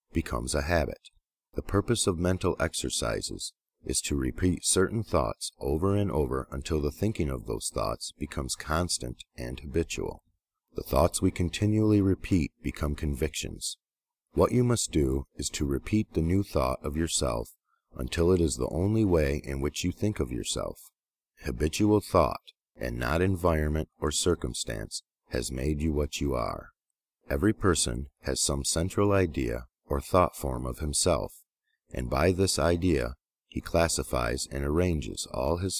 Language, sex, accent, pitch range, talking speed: English, male, American, 70-90 Hz, 155 wpm